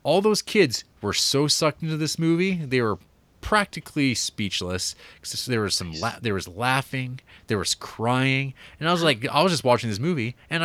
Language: English